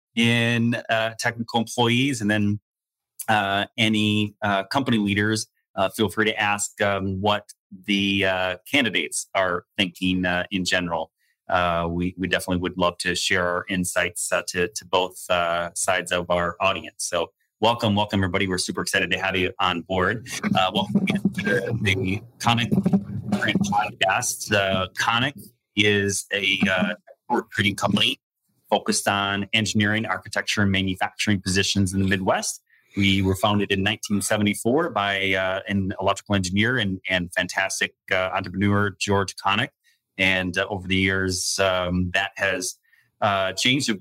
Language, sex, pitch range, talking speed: English, male, 95-110 Hz, 145 wpm